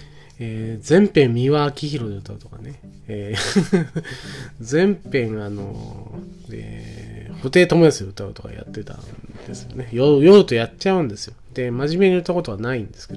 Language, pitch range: Japanese, 105-145 Hz